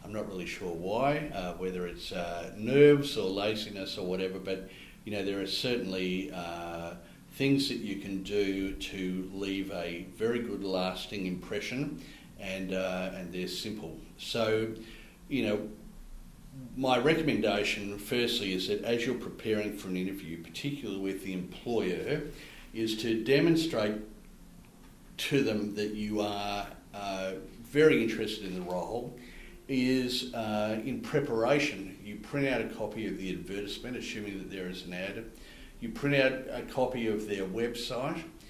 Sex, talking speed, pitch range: male, 150 wpm, 95-120 Hz